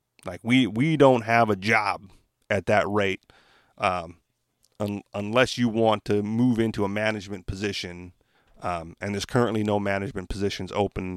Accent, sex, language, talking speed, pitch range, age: American, male, English, 155 wpm, 95-120 Hz, 30-49